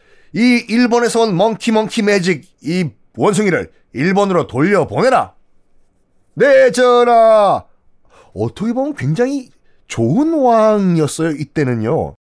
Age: 30-49